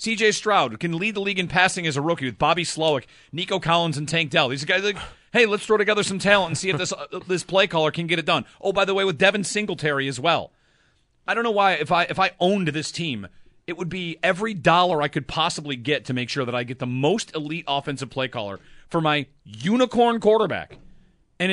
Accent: American